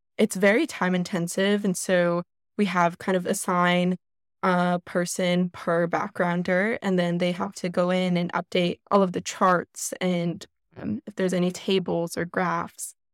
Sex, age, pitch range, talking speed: female, 10-29, 175-200 Hz, 165 wpm